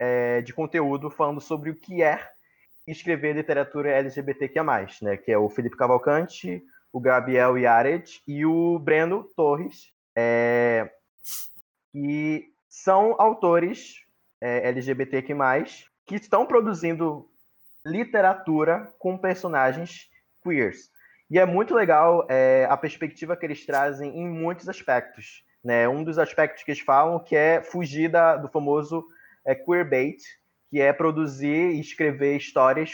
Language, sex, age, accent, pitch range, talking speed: Portuguese, male, 20-39, Brazilian, 130-165 Hz, 135 wpm